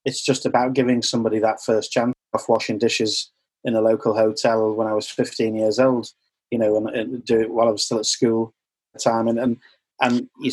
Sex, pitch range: male, 110-130 Hz